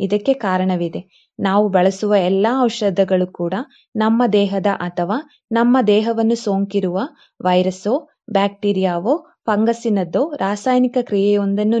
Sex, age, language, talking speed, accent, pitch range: female, 20-39, Kannada, 90 wpm, native, 190-245 Hz